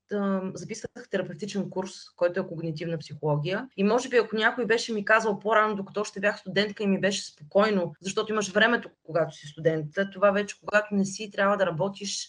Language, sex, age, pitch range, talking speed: Bulgarian, female, 20-39, 175-210 Hz, 185 wpm